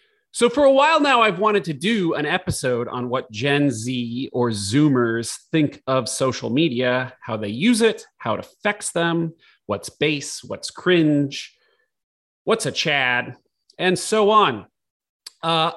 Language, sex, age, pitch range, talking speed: English, male, 30-49, 125-190 Hz, 150 wpm